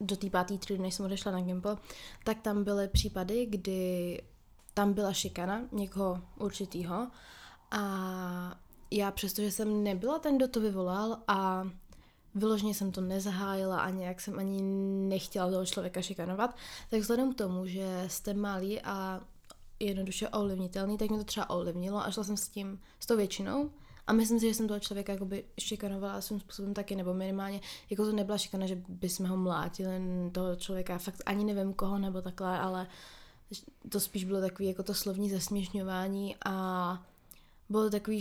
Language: Czech